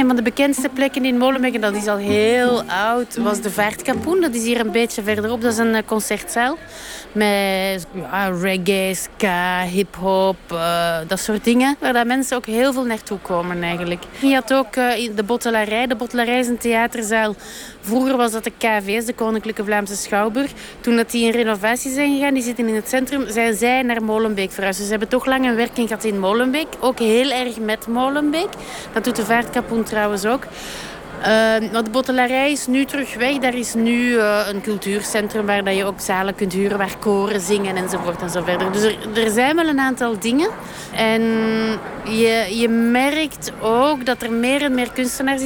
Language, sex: Dutch, female